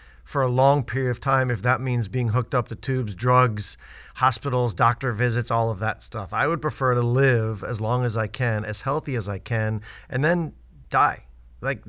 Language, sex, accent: English, male, American